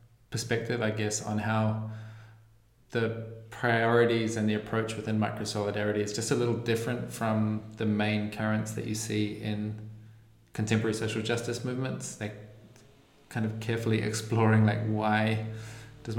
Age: 20-39